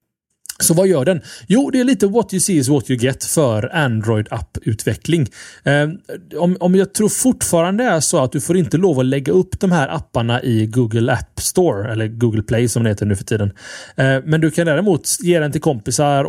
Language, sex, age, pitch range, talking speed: Swedish, male, 30-49, 120-170 Hz, 210 wpm